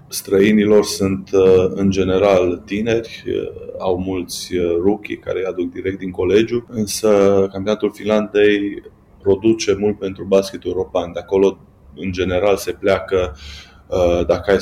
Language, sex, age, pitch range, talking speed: Romanian, male, 20-39, 90-105 Hz, 125 wpm